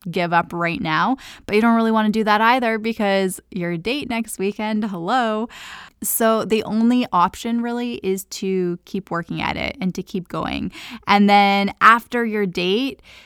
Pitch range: 175-215 Hz